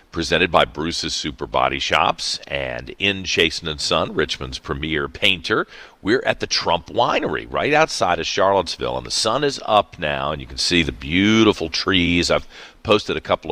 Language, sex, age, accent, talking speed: English, male, 50-69, American, 180 wpm